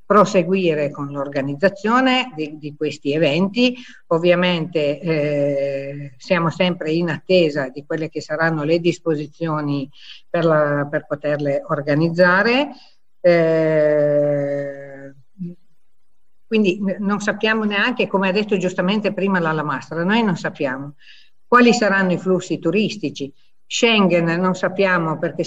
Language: Italian